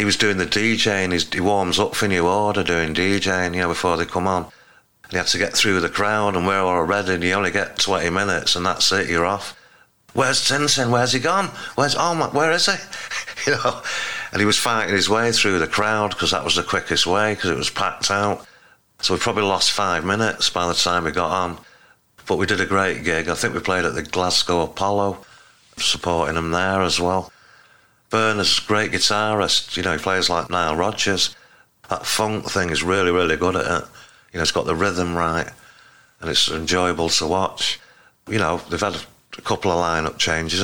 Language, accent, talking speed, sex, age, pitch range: English, British, 215 wpm, male, 50-69, 90-105 Hz